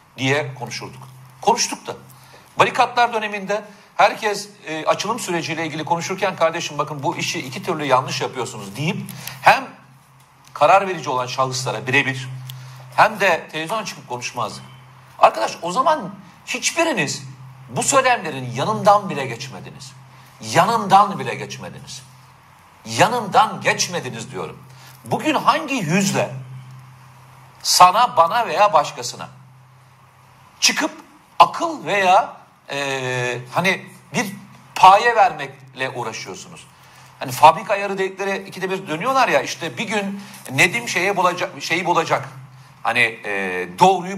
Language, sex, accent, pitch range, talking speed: Turkish, male, native, 135-195 Hz, 115 wpm